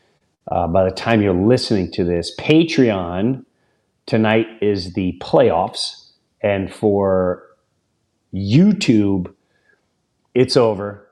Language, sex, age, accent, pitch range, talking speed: English, male, 40-59, American, 95-130 Hz, 95 wpm